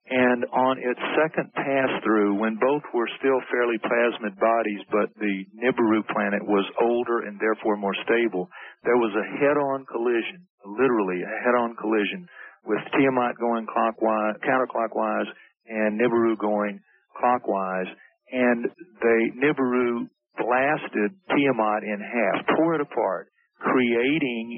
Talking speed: 125 wpm